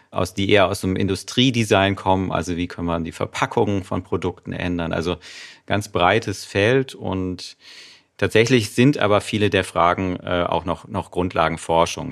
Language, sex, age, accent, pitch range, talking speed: German, male, 40-59, German, 85-105 Hz, 155 wpm